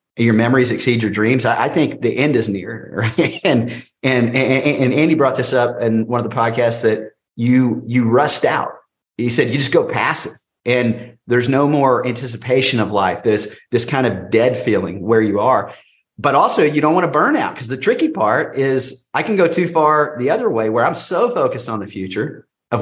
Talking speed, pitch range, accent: 215 wpm, 115-135 Hz, American